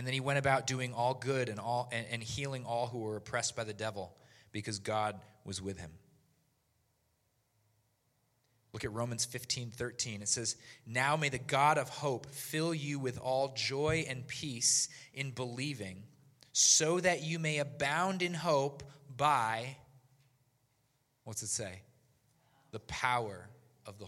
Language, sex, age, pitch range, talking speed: English, male, 20-39, 115-140 Hz, 150 wpm